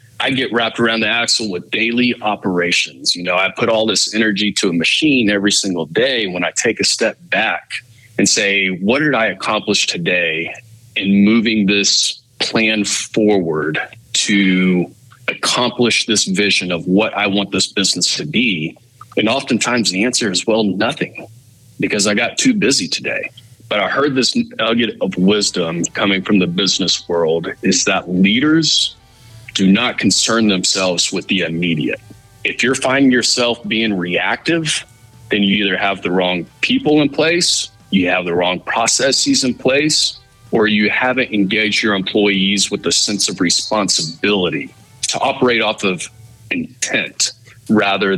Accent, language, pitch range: American, English, 95-120 Hz